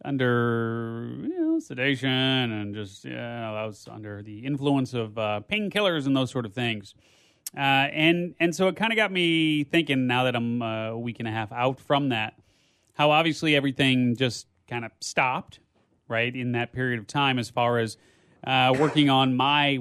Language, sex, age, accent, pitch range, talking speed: English, male, 30-49, American, 120-155 Hz, 195 wpm